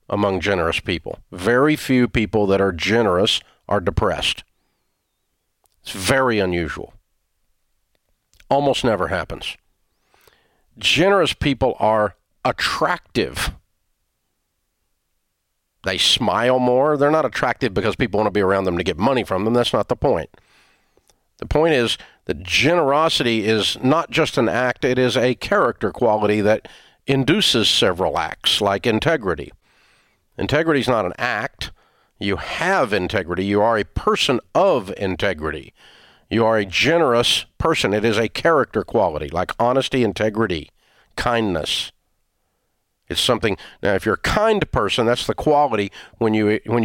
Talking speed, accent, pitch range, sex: 135 wpm, American, 100-125 Hz, male